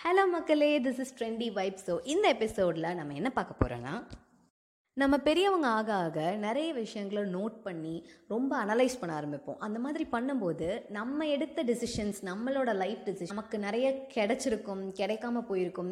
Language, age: Tamil, 20-39